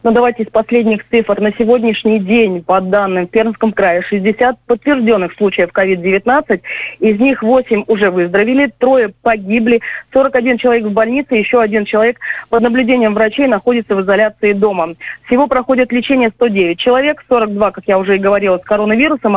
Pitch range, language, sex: 210-245 Hz, Russian, female